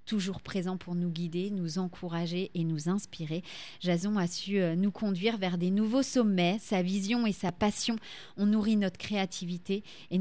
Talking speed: 170 wpm